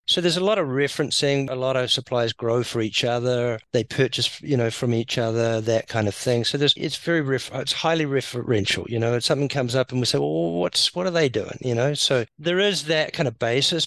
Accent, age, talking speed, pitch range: Australian, 50-69, 245 wpm, 110-130 Hz